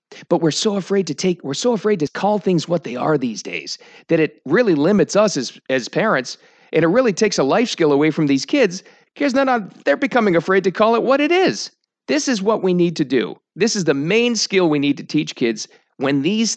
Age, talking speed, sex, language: 40-59, 240 wpm, male, English